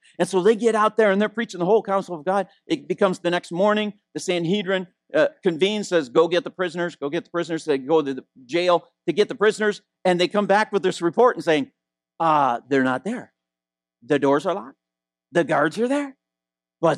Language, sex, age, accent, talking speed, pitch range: English, male, 50-69, American, 225 wpm, 135-215 Hz